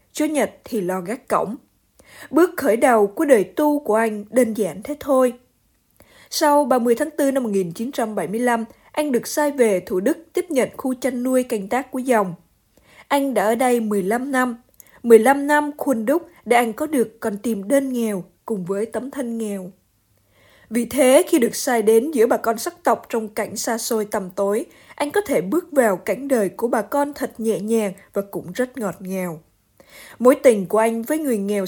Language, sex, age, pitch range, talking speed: Vietnamese, female, 20-39, 210-270 Hz, 195 wpm